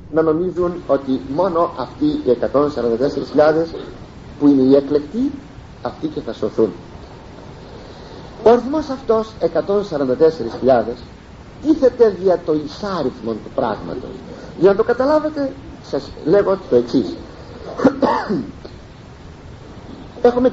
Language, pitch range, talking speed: Greek, 145-245 Hz, 100 wpm